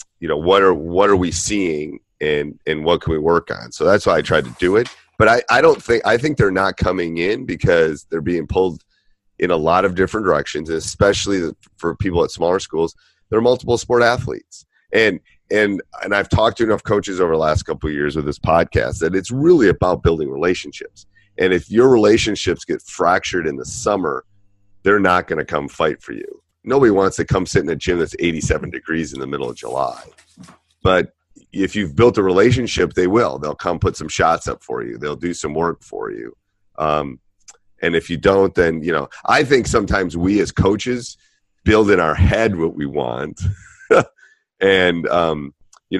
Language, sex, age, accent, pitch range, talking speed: English, male, 30-49, American, 80-100 Hz, 205 wpm